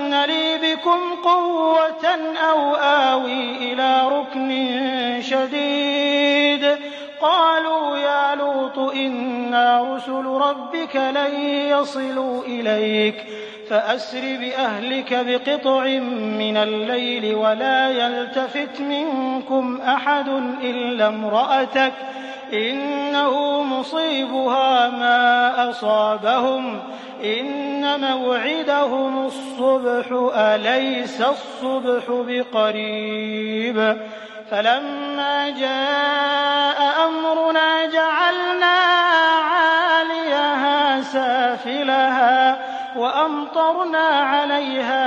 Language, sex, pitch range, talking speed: English, male, 245-285 Hz, 60 wpm